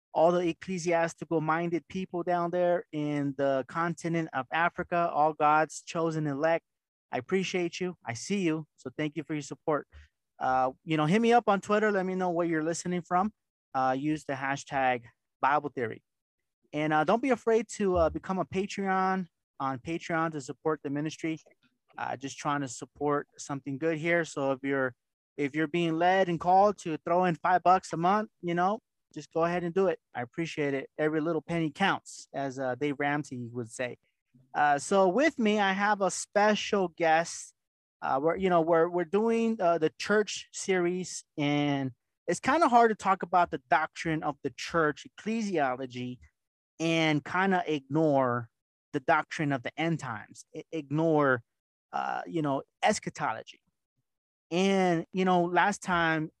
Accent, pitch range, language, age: American, 145-180 Hz, English, 30-49